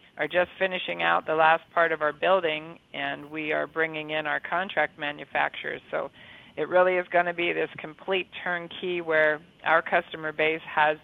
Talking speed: 180 wpm